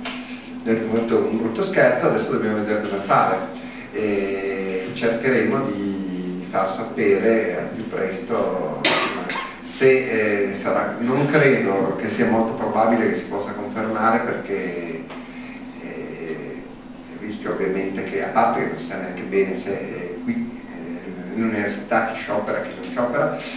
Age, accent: 40-59, native